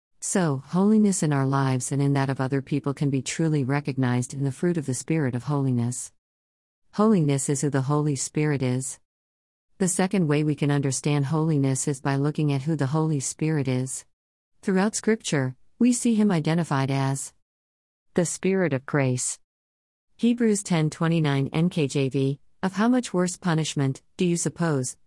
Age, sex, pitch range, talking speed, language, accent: 50-69, female, 130-170 Hz, 165 wpm, English, American